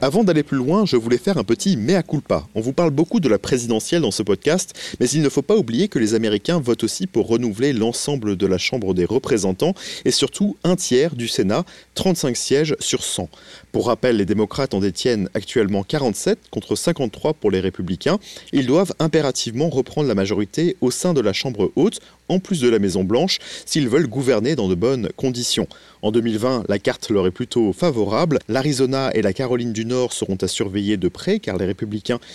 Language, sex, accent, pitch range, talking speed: French, male, French, 110-155 Hz, 200 wpm